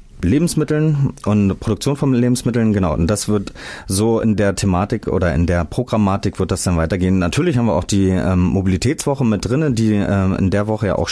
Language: German